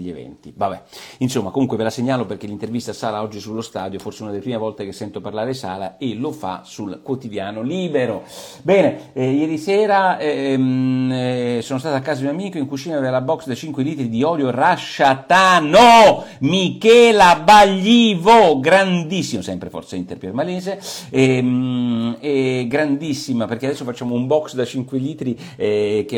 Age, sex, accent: 50-69, male, native